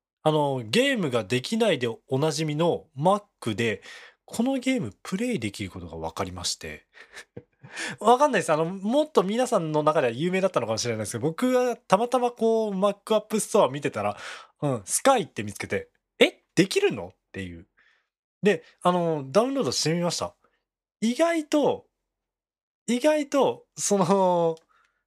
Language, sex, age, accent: Japanese, male, 20-39, native